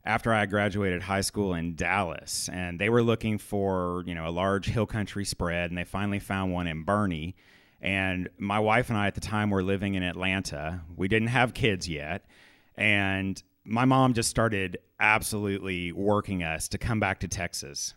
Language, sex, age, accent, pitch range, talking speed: English, male, 30-49, American, 95-110 Hz, 185 wpm